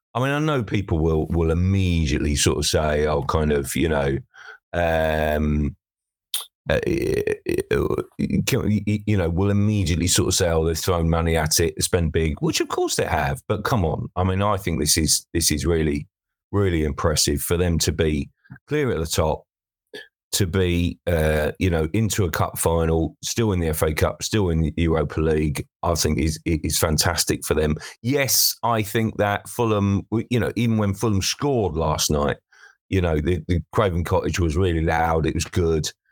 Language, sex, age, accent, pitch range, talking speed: English, male, 30-49, British, 80-105 Hz, 185 wpm